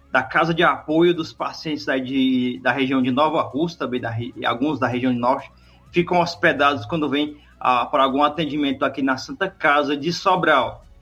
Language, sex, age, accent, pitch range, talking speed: Portuguese, male, 20-39, Brazilian, 135-185 Hz, 180 wpm